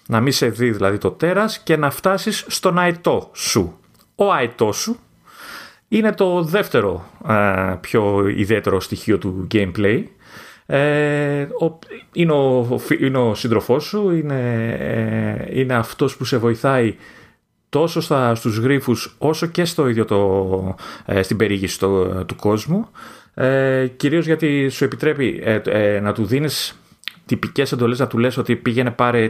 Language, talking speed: Greek, 150 wpm